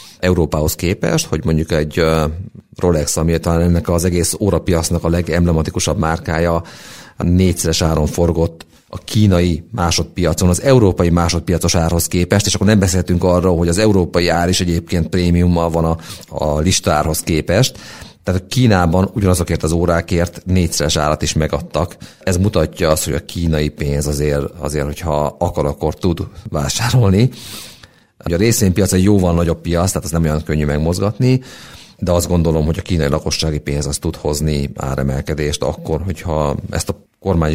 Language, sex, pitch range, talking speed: Hungarian, male, 80-95 Hz, 155 wpm